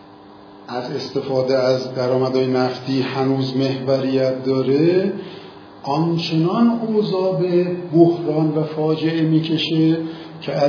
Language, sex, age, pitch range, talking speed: Persian, male, 50-69, 130-180 Hz, 85 wpm